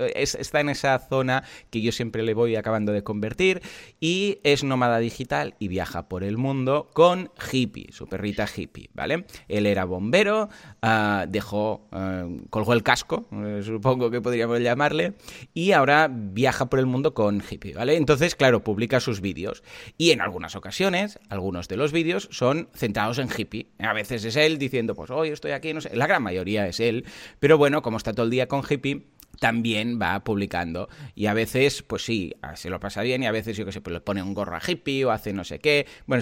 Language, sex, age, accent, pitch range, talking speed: Spanish, male, 30-49, Spanish, 105-135 Hz, 205 wpm